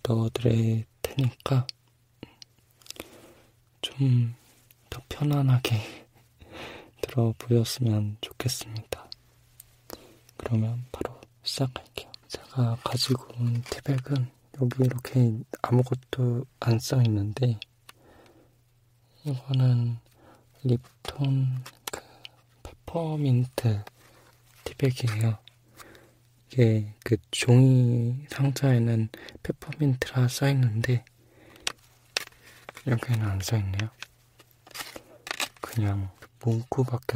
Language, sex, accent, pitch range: Korean, male, native, 115-125 Hz